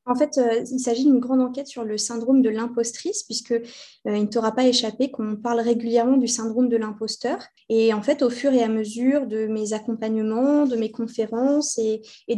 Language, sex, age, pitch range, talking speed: French, female, 20-39, 230-265 Hz, 195 wpm